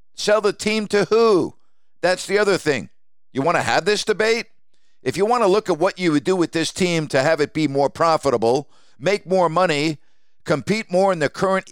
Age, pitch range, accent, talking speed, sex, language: 50-69, 150-195 Hz, American, 215 wpm, male, English